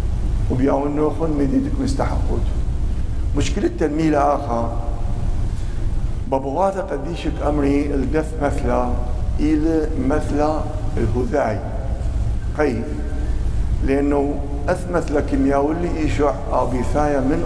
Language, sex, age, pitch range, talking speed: English, male, 60-79, 105-160 Hz, 90 wpm